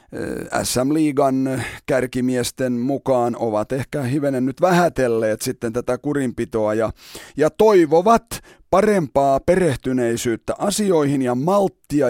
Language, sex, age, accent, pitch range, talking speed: Finnish, male, 30-49, native, 130-170 Hz, 90 wpm